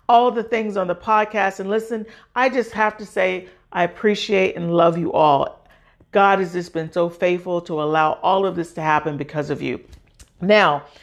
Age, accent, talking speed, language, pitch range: 50-69, American, 195 wpm, English, 165-220 Hz